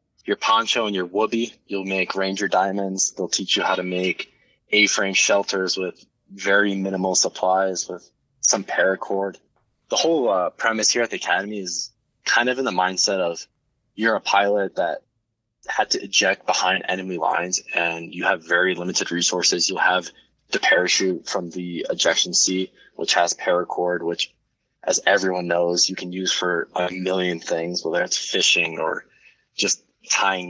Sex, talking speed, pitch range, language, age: male, 165 wpm, 90-110 Hz, English, 20-39